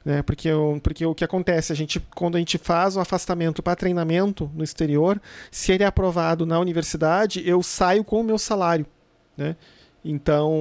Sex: male